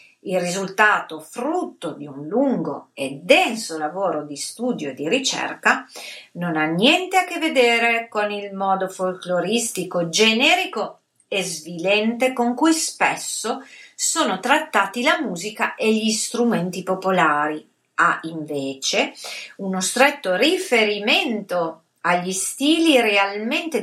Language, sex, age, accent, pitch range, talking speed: Italian, female, 40-59, native, 180-270 Hz, 115 wpm